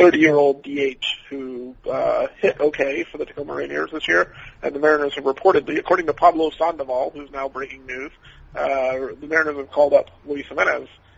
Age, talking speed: 30-49, 175 wpm